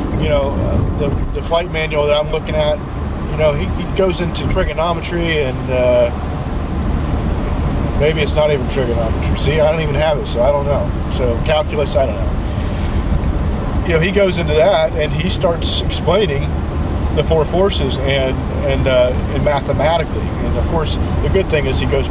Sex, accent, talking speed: male, American, 180 wpm